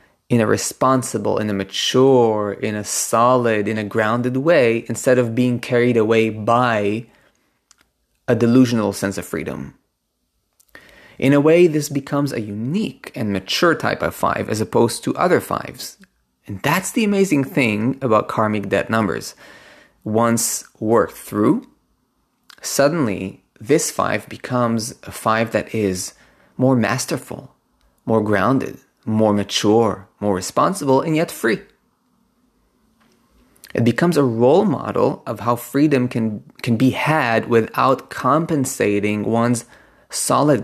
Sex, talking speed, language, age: male, 130 wpm, English, 20-39